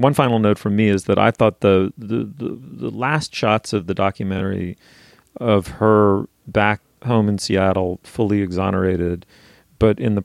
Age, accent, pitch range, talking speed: 40-59, American, 95-110 Hz, 170 wpm